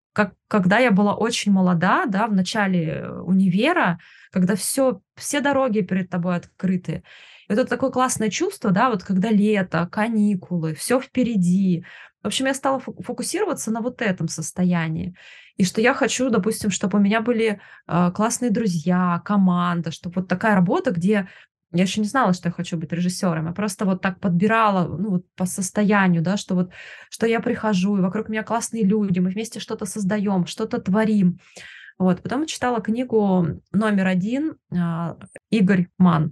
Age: 20-39